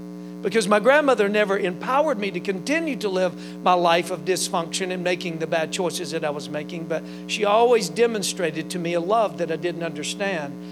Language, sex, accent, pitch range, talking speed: English, male, American, 170-240 Hz, 195 wpm